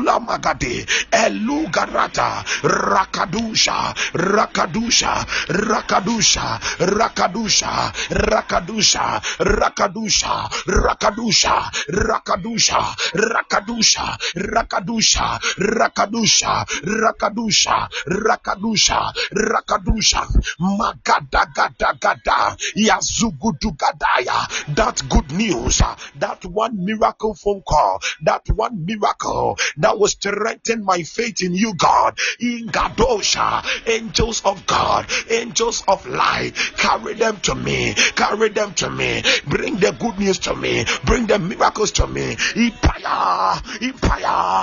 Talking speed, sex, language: 90 wpm, male, English